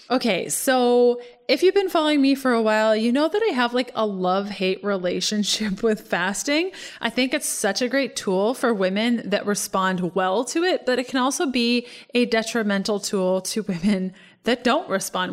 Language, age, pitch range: English, 20-39, 195-255 Hz